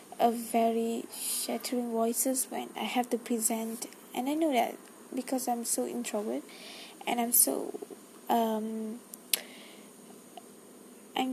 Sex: female